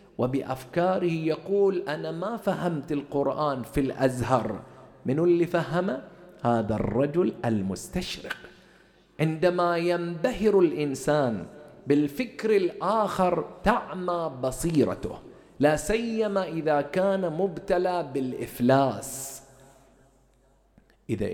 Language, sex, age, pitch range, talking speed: English, male, 50-69, 135-185 Hz, 80 wpm